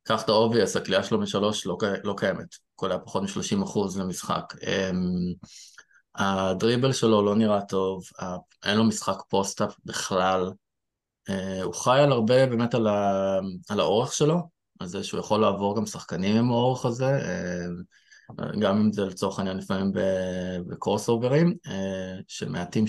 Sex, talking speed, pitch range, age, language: male, 130 wpm, 95-125 Hz, 20-39, Hebrew